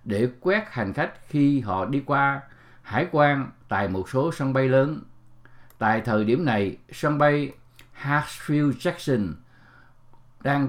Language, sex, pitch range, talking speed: English, male, 115-150 Hz, 140 wpm